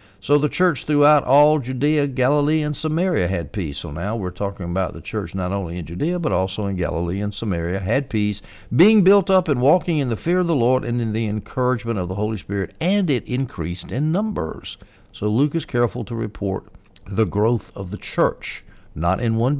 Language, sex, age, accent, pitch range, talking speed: English, male, 60-79, American, 95-135 Hz, 210 wpm